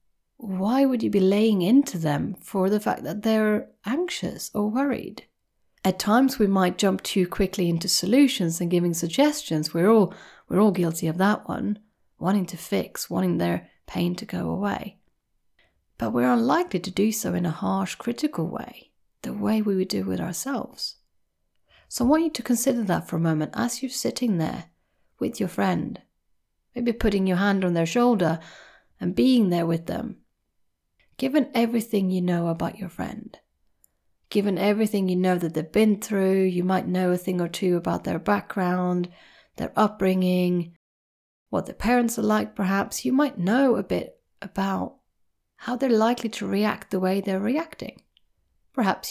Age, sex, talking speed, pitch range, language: 30-49, female, 170 wpm, 175-230 Hz, English